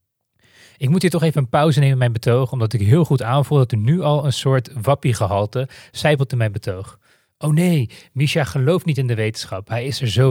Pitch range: 115-145 Hz